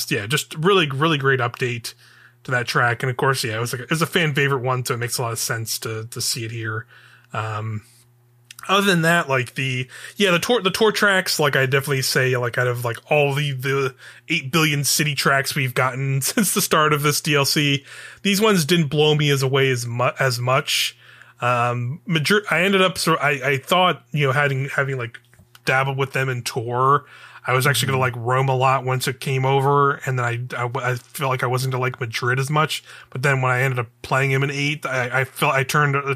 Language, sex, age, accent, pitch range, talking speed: English, male, 20-39, American, 125-145 Hz, 235 wpm